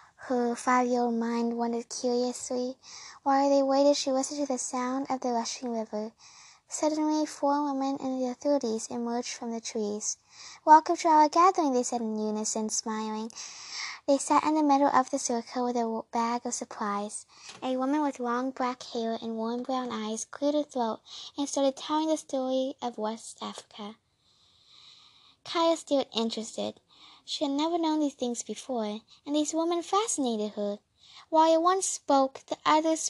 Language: English